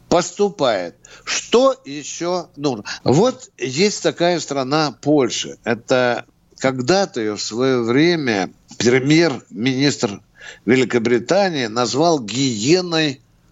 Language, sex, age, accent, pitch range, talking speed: Russian, male, 60-79, native, 135-205 Hz, 85 wpm